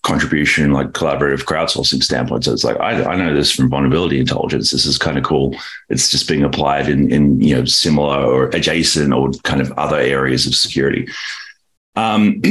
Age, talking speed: 30-49, 185 wpm